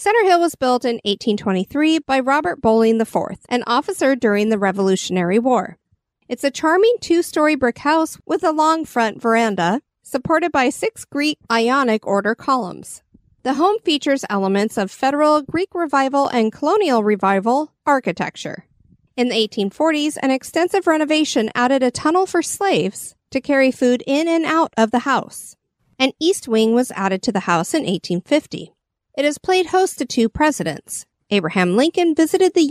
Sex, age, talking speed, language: female, 50-69, 160 wpm, English